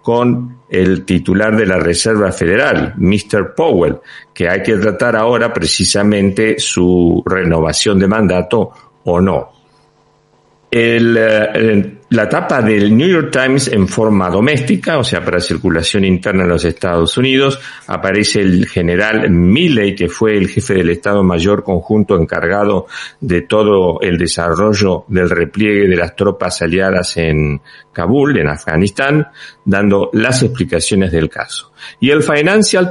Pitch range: 90-115 Hz